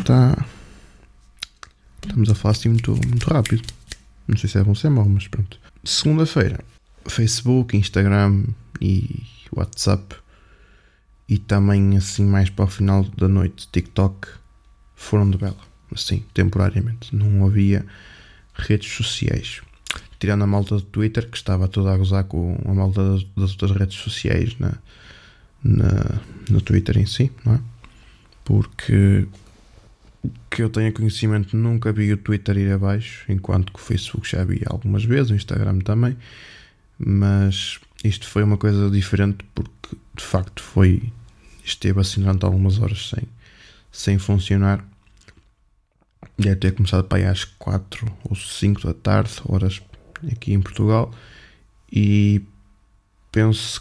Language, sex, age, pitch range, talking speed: Portuguese, male, 20-39, 95-110 Hz, 130 wpm